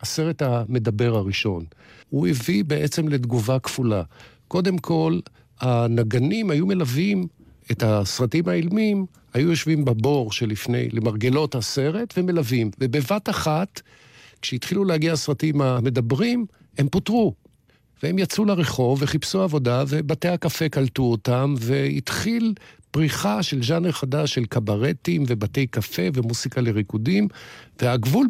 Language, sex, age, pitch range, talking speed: Hebrew, male, 50-69, 125-170 Hz, 110 wpm